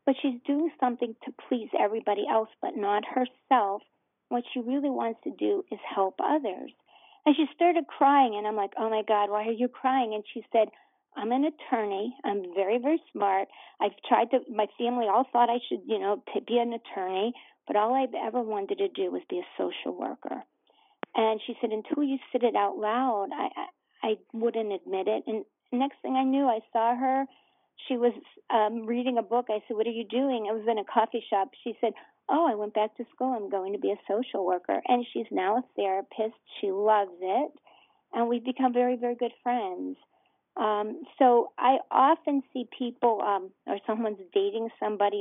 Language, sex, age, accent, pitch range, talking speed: English, female, 50-69, American, 210-260 Hz, 200 wpm